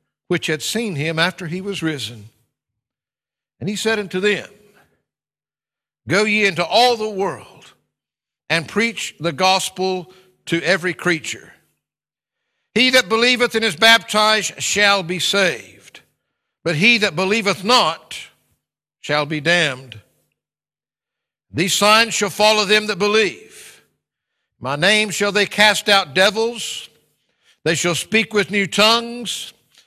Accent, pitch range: American, 170-215 Hz